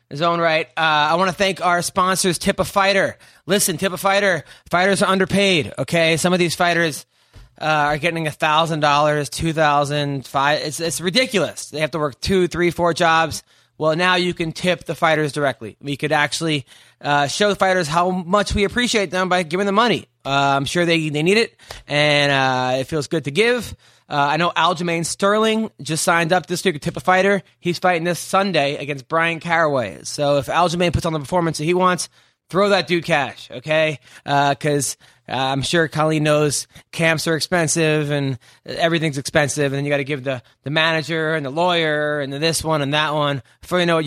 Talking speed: 205 wpm